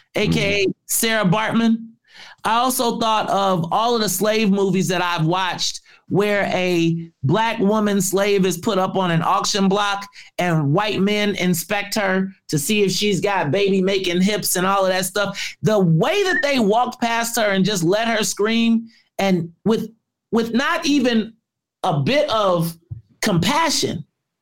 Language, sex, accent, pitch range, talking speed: English, male, American, 185-245 Hz, 160 wpm